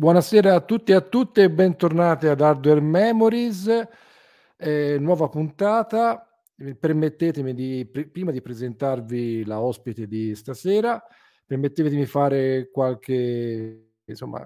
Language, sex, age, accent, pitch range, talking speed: Italian, male, 40-59, native, 115-150 Hz, 115 wpm